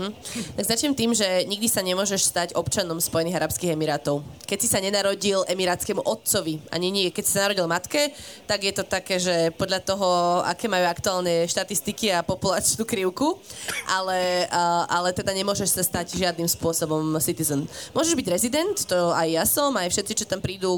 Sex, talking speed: female, 175 wpm